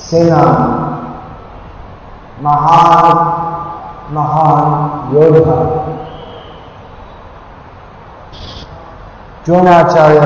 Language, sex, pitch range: Hindi, male, 140-170 Hz